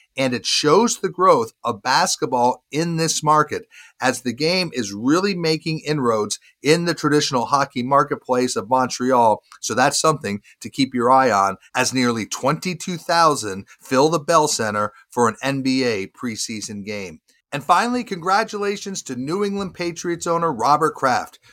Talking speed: 150 wpm